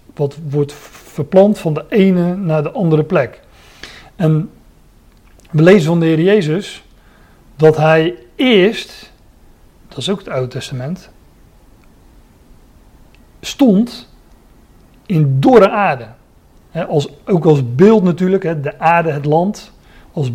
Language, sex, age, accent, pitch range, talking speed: Dutch, male, 40-59, Dutch, 145-190 Hz, 115 wpm